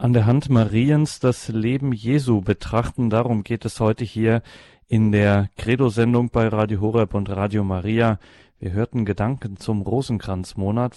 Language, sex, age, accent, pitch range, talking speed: German, male, 40-59, German, 110-130 Hz, 150 wpm